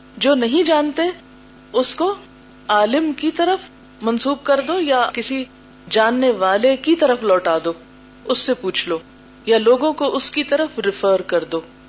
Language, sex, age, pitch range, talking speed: Urdu, female, 40-59, 190-250 Hz, 160 wpm